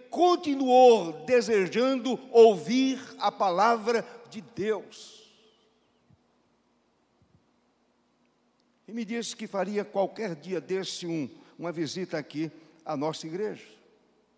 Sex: male